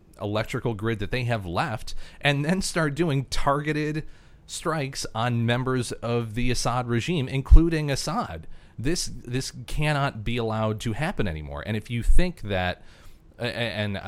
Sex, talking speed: male, 145 wpm